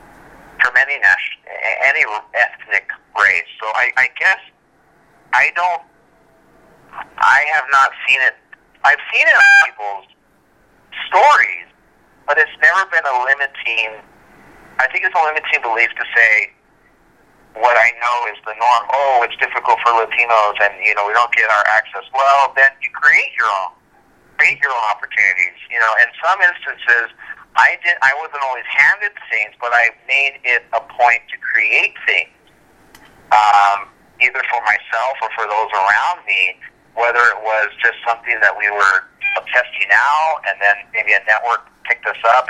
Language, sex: English, male